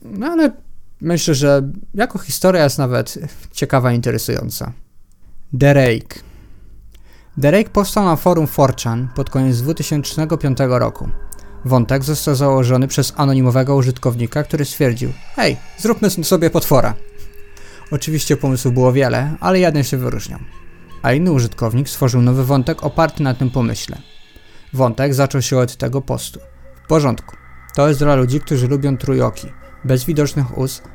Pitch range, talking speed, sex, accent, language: 120-150 Hz, 140 wpm, male, native, Polish